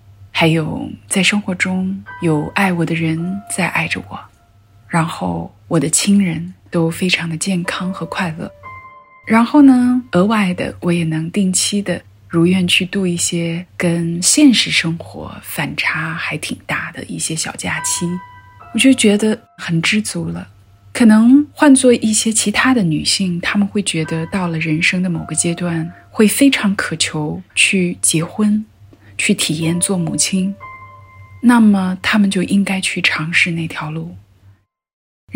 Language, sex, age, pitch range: Chinese, female, 20-39, 160-205 Hz